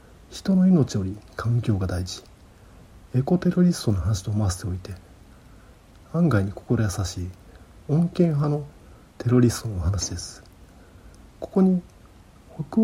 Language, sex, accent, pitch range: Japanese, male, native, 90-125 Hz